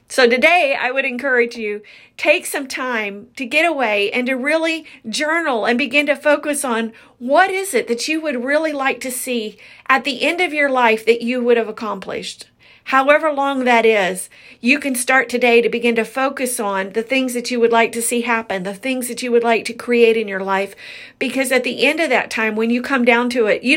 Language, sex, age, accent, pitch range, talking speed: English, female, 40-59, American, 230-270 Hz, 225 wpm